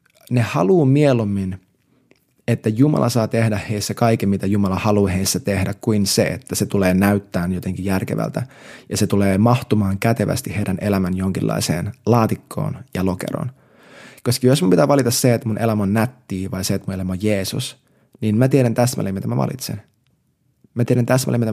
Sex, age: male, 20-39